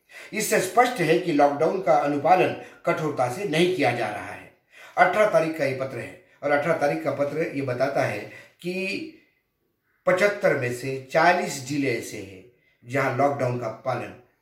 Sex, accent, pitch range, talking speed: male, native, 140-180 Hz, 130 wpm